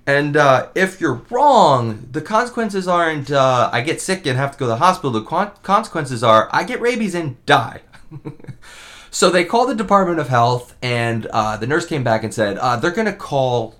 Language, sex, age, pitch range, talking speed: English, male, 30-49, 95-135 Hz, 210 wpm